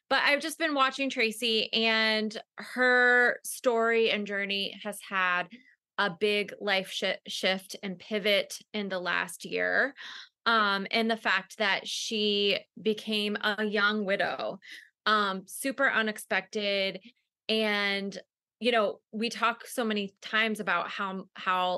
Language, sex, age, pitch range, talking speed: English, female, 20-39, 195-230 Hz, 130 wpm